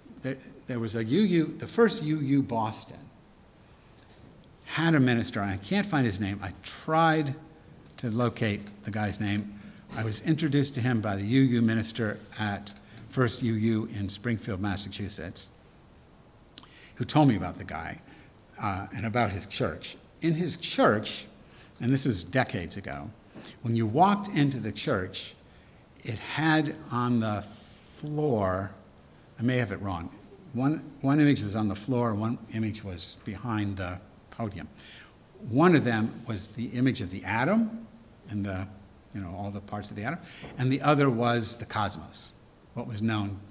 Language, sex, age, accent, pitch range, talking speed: English, male, 60-79, American, 100-130 Hz, 160 wpm